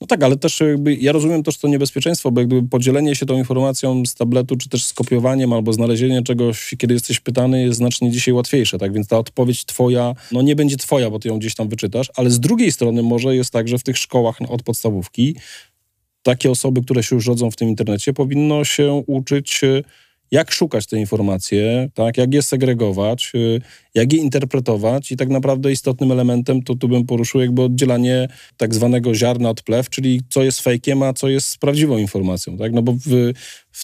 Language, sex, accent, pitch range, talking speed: Polish, male, native, 115-130 Hz, 200 wpm